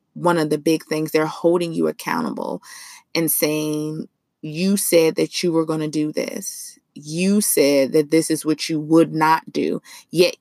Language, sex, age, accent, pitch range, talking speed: English, female, 20-39, American, 155-175 Hz, 180 wpm